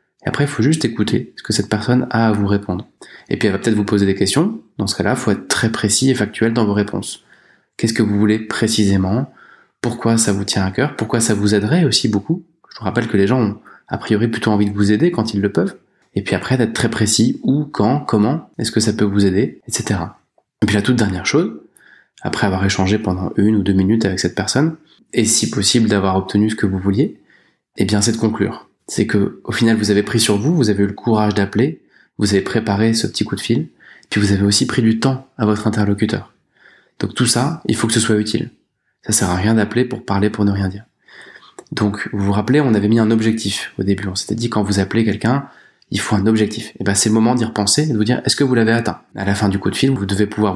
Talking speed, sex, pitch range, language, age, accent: 260 wpm, male, 100-115 Hz, French, 20-39, French